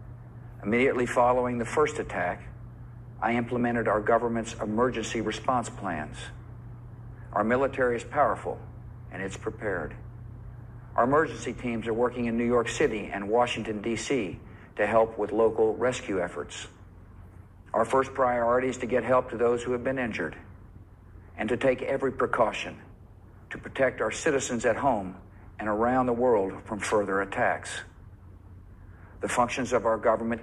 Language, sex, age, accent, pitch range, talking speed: English, male, 60-79, American, 100-120 Hz, 145 wpm